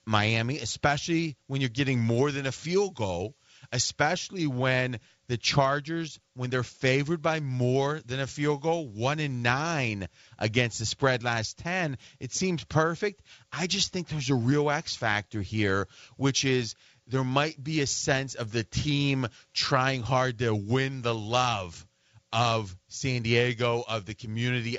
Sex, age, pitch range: male, 30-49, 120-145 Hz